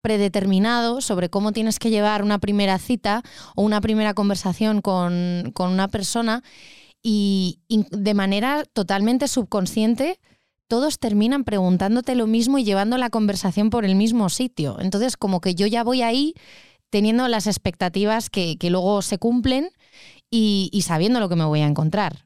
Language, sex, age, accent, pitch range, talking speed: Spanish, female, 20-39, Spanish, 190-230 Hz, 160 wpm